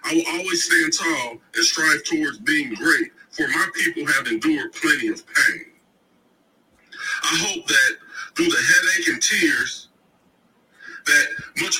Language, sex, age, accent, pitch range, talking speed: English, male, 50-69, American, 320-385 Hz, 140 wpm